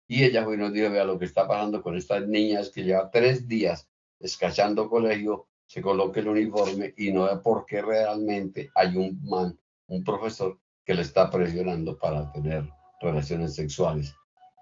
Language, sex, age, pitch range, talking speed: Spanish, male, 50-69, 90-110 Hz, 170 wpm